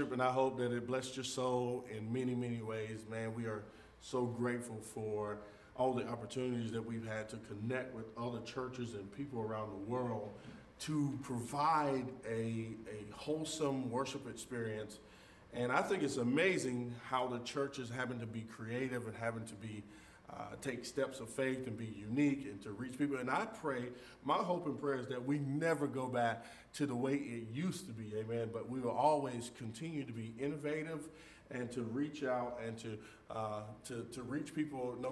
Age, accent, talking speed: 40-59, American, 190 wpm